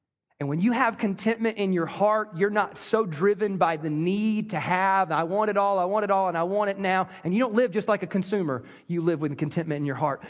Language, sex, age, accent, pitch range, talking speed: English, male, 30-49, American, 170-230 Hz, 260 wpm